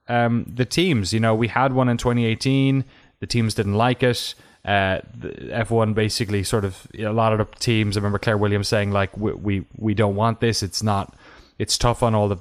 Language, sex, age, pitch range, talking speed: English, male, 20-39, 100-125 Hz, 225 wpm